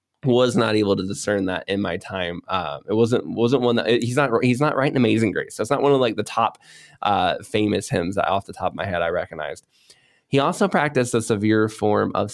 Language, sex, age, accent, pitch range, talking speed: English, male, 20-39, American, 105-130 Hz, 255 wpm